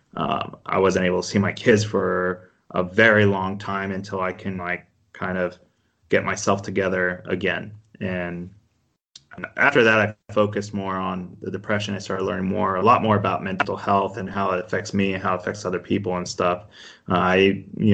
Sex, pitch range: male, 95-110 Hz